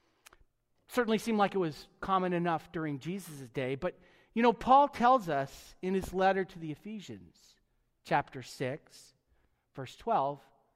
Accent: American